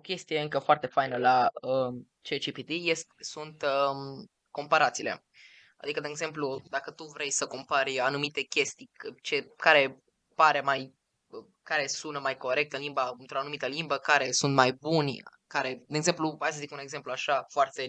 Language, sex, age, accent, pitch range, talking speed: Romanian, female, 20-39, native, 135-160 Hz, 165 wpm